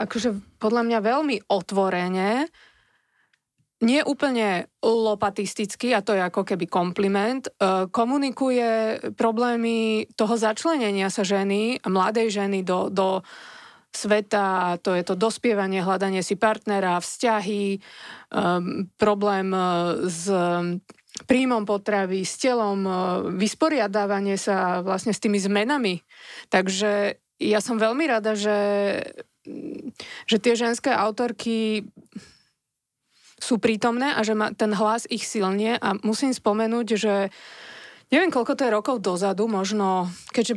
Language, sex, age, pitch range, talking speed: Slovak, female, 20-39, 195-230 Hz, 115 wpm